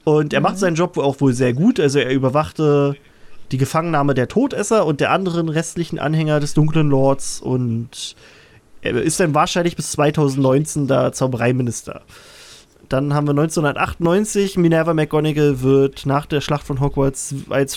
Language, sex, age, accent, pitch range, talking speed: German, male, 20-39, German, 145-175 Hz, 155 wpm